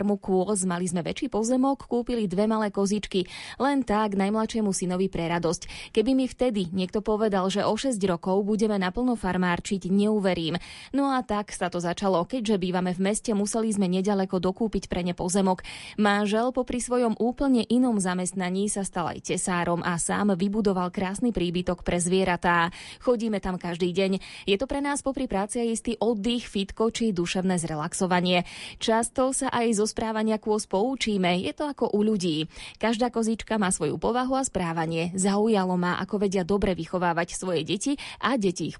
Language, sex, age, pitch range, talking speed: Slovak, female, 20-39, 185-225 Hz, 160 wpm